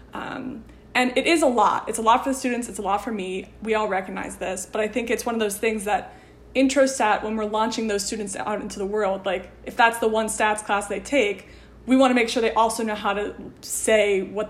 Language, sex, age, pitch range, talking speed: English, female, 20-39, 200-235 Hz, 255 wpm